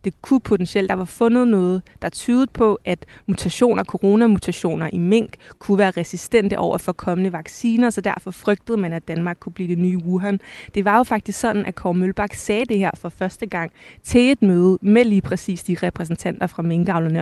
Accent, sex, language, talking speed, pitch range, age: native, female, Danish, 200 wpm, 175-210 Hz, 20-39